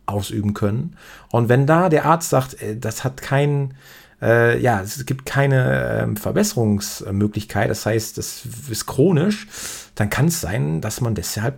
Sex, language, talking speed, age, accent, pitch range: male, German, 155 wpm, 40-59, German, 105-130 Hz